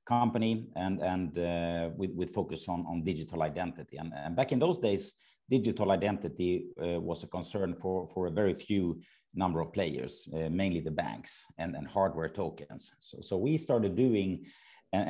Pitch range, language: 85-105 Hz, Swedish